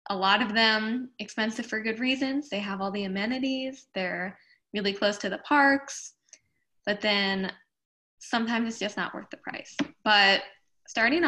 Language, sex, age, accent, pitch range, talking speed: English, female, 10-29, American, 195-235 Hz, 160 wpm